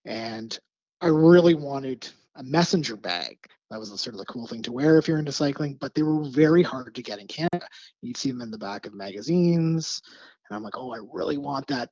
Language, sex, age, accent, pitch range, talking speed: English, male, 30-49, American, 125-165 Hz, 230 wpm